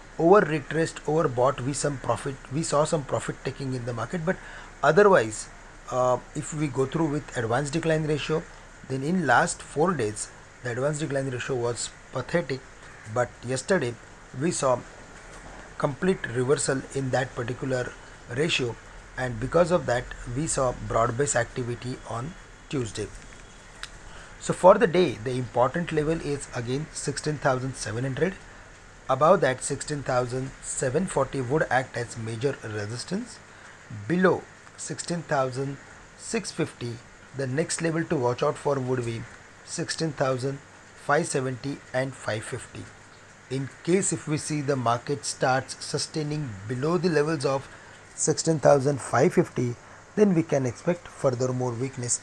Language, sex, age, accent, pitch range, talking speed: English, male, 40-59, Indian, 120-150 Hz, 130 wpm